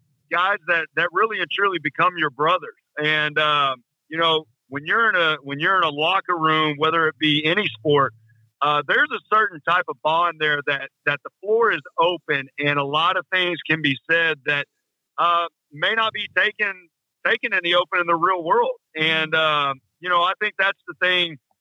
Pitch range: 145-175 Hz